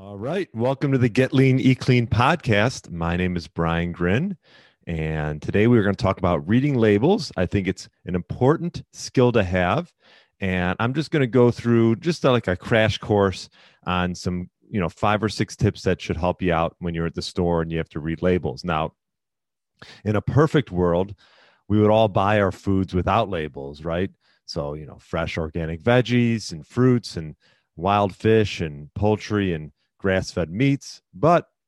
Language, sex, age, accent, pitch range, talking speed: English, male, 30-49, American, 85-115 Hz, 190 wpm